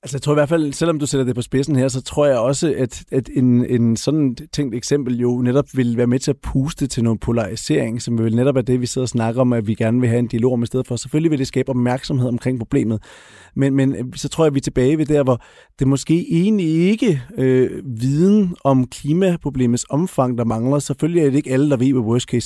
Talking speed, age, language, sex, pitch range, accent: 255 wpm, 30-49, Danish, male, 120-145 Hz, native